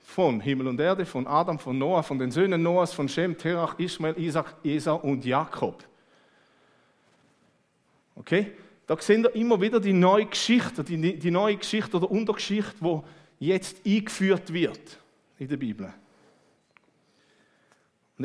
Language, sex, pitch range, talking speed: German, male, 145-200 Hz, 140 wpm